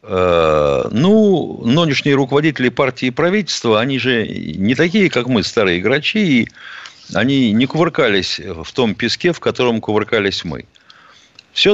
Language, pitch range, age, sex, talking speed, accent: Russian, 115-170 Hz, 50-69, male, 135 wpm, native